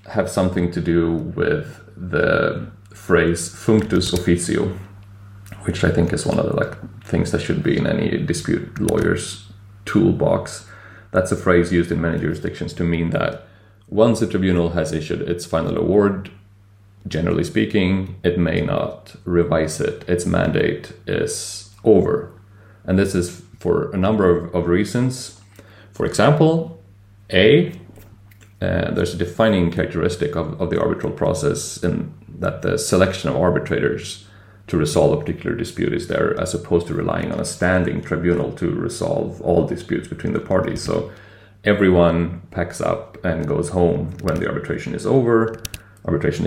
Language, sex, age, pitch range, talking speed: English, male, 30-49, 85-105 Hz, 150 wpm